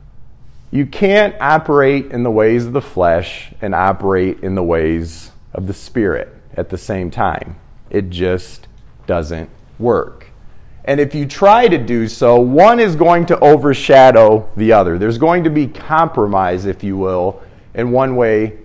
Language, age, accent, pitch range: English, 40-59, American, 100-140 Hz